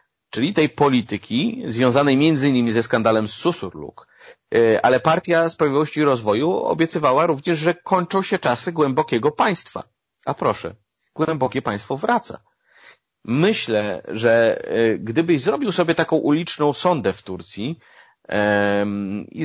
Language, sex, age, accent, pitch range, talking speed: Polish, male, 30-49, native, 105-145 Hz, 115 wpm